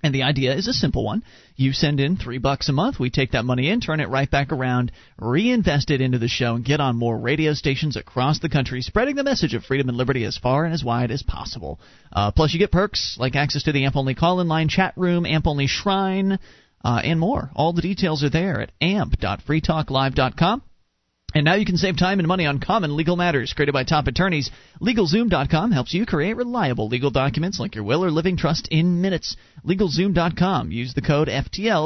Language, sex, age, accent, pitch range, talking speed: English, male, 30-49, American, 135-180 Hz, 215 wpm